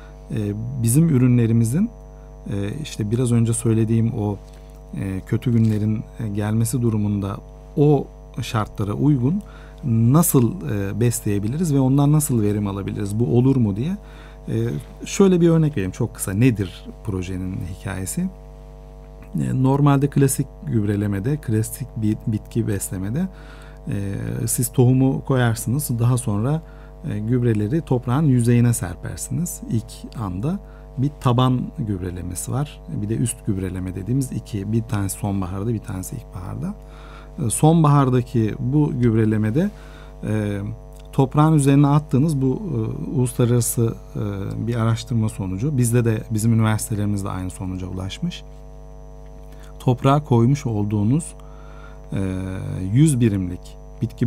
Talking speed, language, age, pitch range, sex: 105 wpm, Turkish, 40-59, 105-150 Hz, male